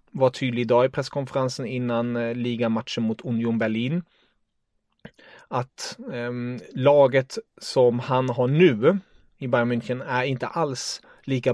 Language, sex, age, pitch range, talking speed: English, male, 30-49, 120-145 Hz, 125 wpm